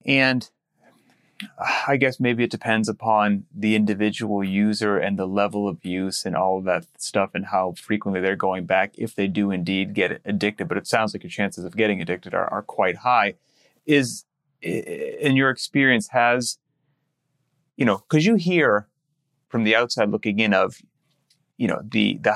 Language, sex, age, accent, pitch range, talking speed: English, male, 30-49, American, 100-125 Hz, 175 wpm